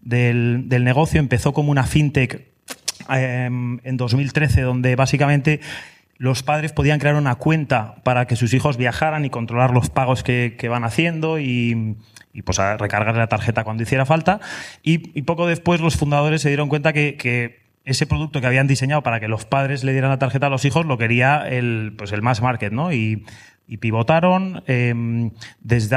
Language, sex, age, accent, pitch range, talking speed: Spanish, male, 30-49, Spanish, 115-145 Hz, 185 wpm